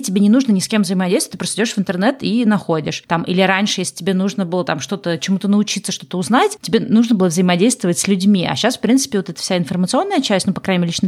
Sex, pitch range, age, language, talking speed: female, 175-205 Hz, 30-49, Russian, 250 wpm